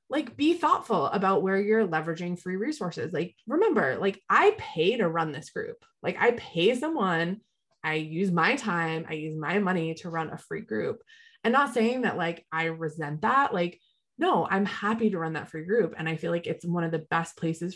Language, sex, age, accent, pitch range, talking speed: English, female, 20-39, American, 165-220 Hz, 210 wpm